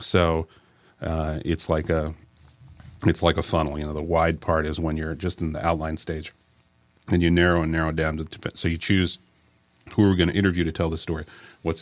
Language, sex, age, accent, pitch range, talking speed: English, male, 40-59, American, 80-85 Hz, 225 wpm